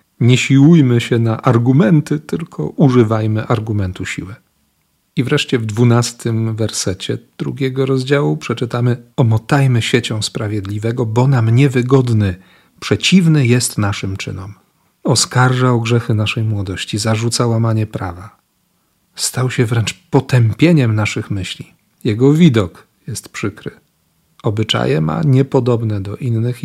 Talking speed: 110 wpm